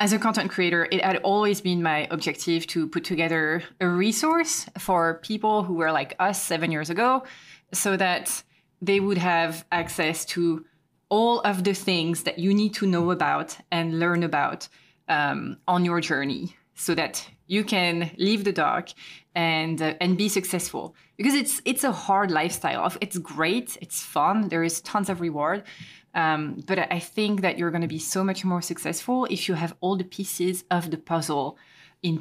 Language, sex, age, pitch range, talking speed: English, female, 20-39, 165-195 Hz, 180 wpm